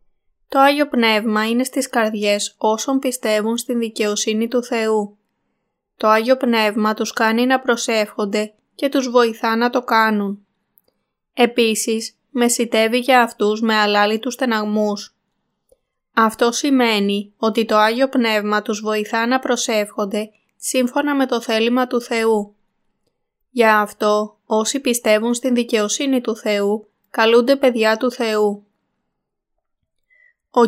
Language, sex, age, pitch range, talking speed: Greek, female, 20-39, 215-245 Hz, 120 wpm